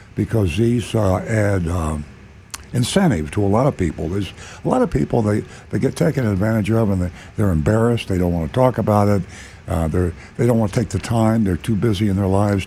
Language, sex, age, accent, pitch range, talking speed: English, male, 60-79, American, 95-115 Hz, 225 wpm